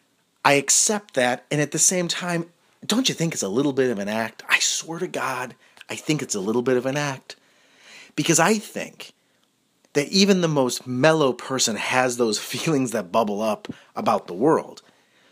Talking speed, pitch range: 190 wpm, 130-175 Hz